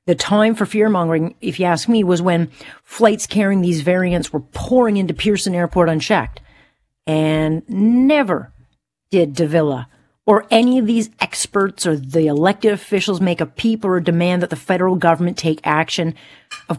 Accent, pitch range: American, 170-215 Hz